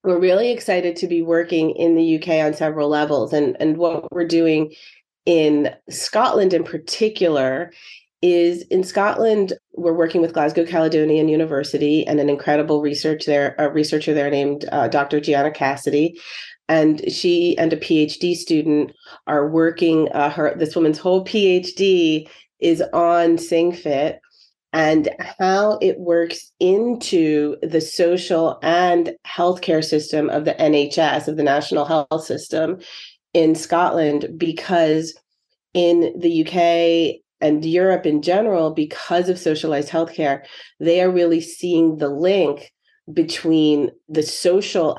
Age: 30-49